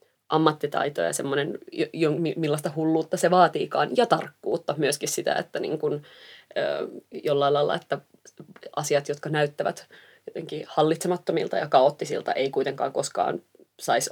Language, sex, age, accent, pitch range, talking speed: Finnish, female, 20-39, native, 145-165 Hz, 110 wpm